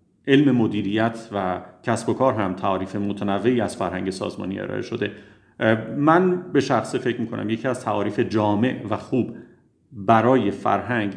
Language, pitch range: Persian, 105-135 Hz